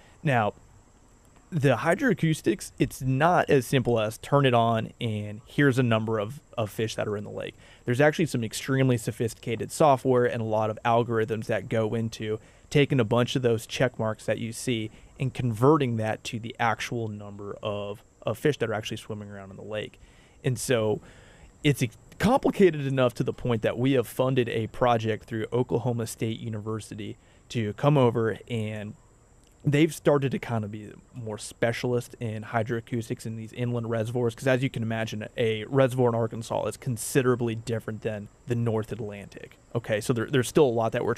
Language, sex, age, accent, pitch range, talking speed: English, male, 30-49, American, 110-130 Hz, 185 wpm